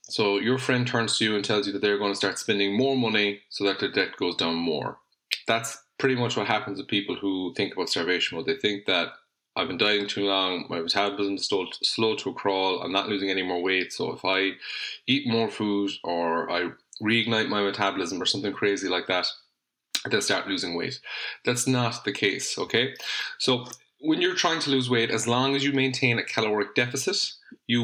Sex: male